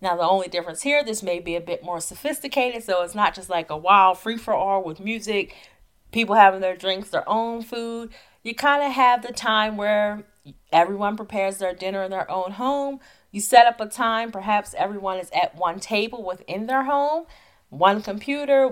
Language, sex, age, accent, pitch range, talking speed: English, female, 30-49, American, 180-240 Hz, 200 wpm